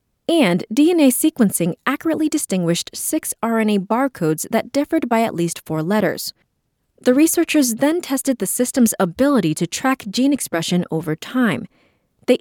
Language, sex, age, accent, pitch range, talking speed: English, female, 20-39, American, 175-275 Hz, 140 wpm